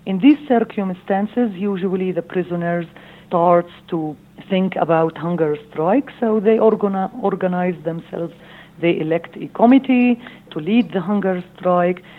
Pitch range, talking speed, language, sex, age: 170-200 Hz, 125 wpm, English, female, 50-69